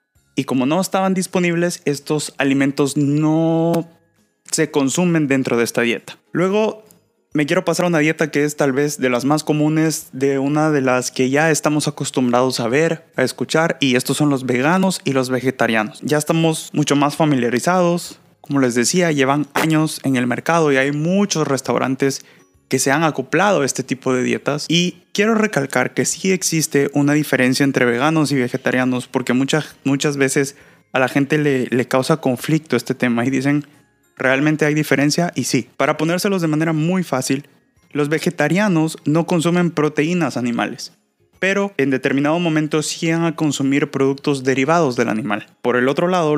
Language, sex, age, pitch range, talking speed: Spanish, male, 20-39, 130-160 Hz, 175 wpm